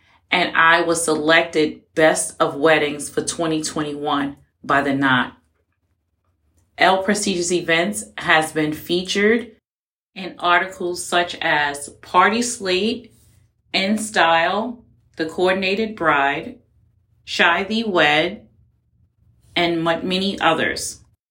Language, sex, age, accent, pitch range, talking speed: English, female, 30-49, American, 155-180 Hz, 100 wpm